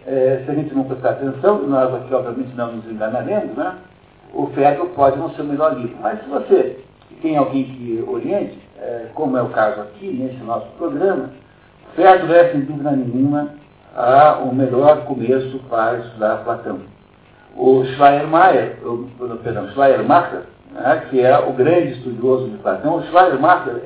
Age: 60-79